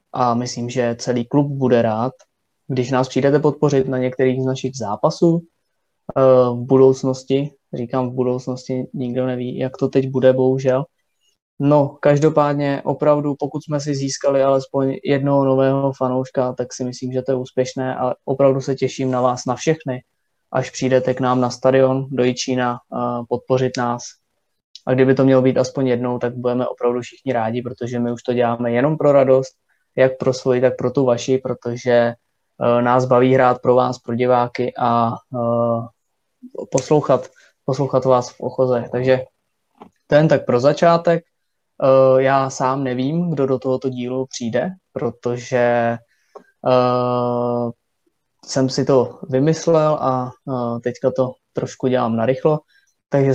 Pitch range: 125-135 Hz